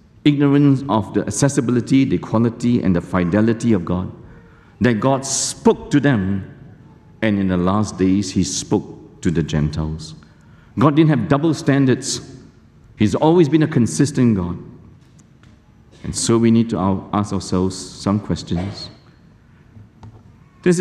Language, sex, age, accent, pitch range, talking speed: English, male, 60-79, Malaysian, 95-135 Hz, 135 wpm